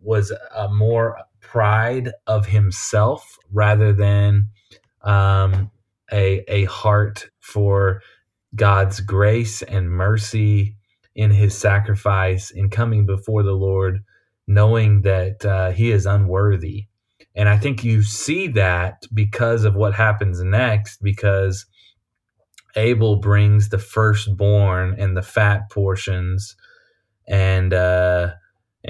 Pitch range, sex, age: 100-110 Hz, male, 20-39